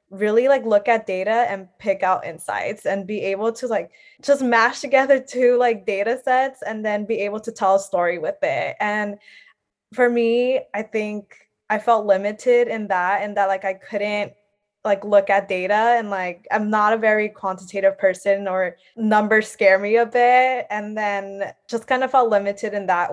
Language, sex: English, female